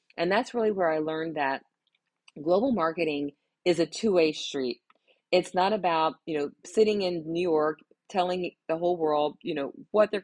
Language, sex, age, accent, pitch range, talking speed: English, female, 40-59, American, 160-190 Hz, 175 wpm